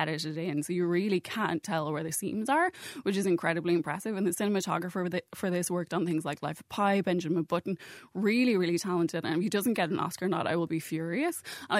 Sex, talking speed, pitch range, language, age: female, 230 wpm, 170-205 Hz, English, 20-39